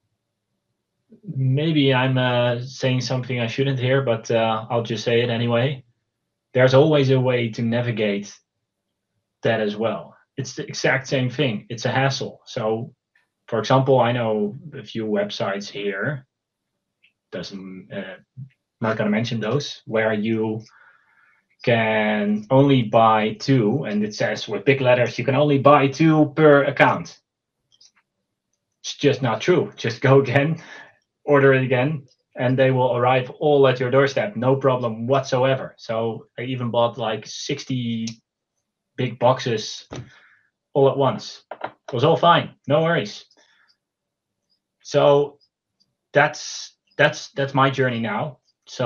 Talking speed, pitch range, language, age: 140 wpm, 110-135 Hz, English, 20-39